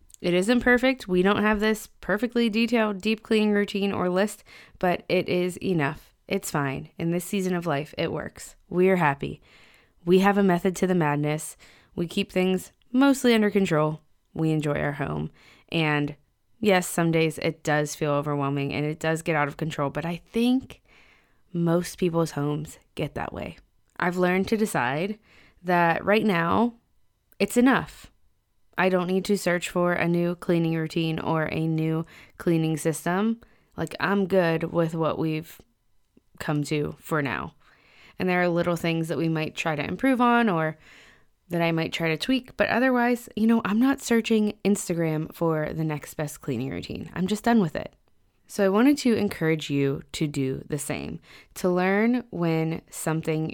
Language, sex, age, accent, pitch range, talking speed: English, female, 20-39, American, 160-205 Hz, 175 wpm